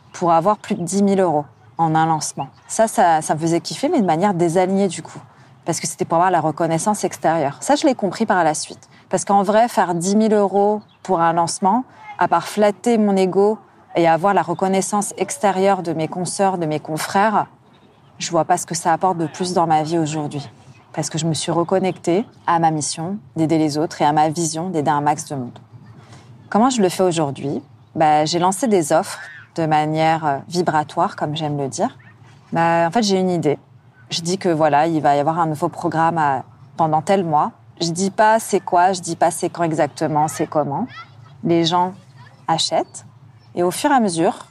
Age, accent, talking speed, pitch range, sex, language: 30-49, French, 215 wpm, 150-190 Hz, female, French